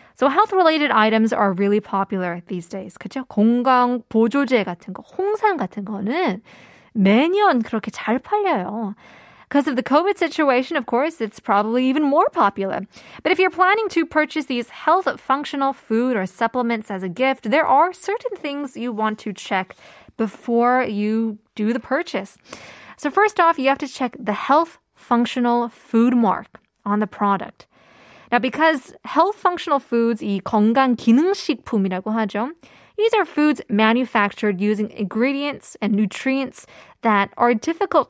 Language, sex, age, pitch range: Korean, female, 20-39, 210-285 Hz